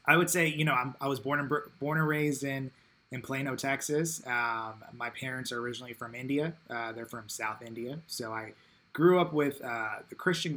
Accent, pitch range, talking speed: American, 115-145 Hz, 210 wpm